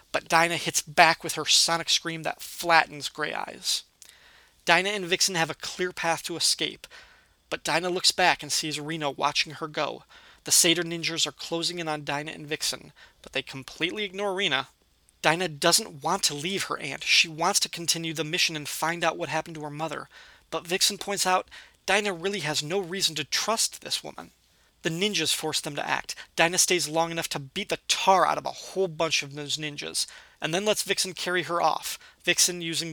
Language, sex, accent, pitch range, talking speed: English, male, American, 150-180 Hz, 200 wpm